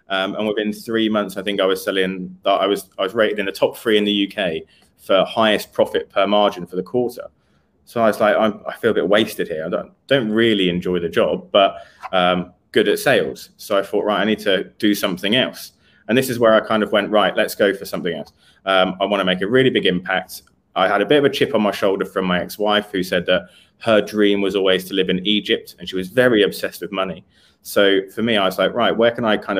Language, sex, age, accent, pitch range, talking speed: English, male, 20-39, British, 95-110 Hz, 260 wpm